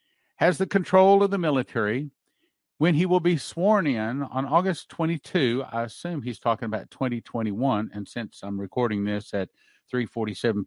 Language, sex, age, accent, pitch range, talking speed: English, male, 50-69, American, 115-150 Hz, 155 wpm